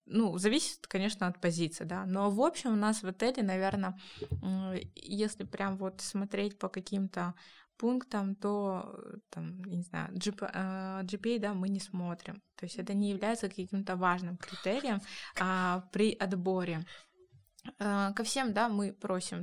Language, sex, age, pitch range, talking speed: Russian, female, 20-39, 185-210 Hz, 140 wpm